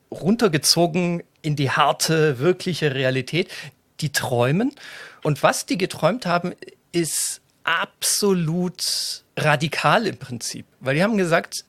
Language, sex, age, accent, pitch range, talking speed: German, male, 40-59, German, 130-175 Hz, 115 wpm